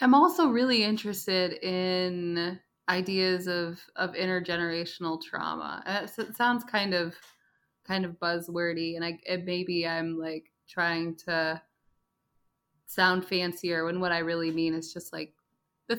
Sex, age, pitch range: female, 20-39, 160-215 Hz